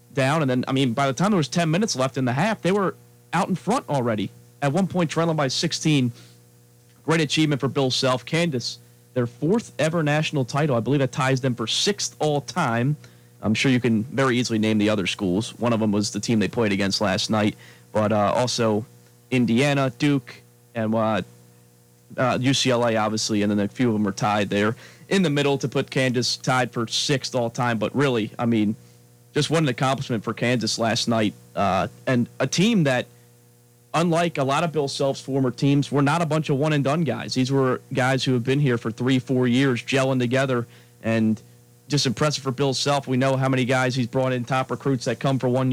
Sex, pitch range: male, 110-140 Hz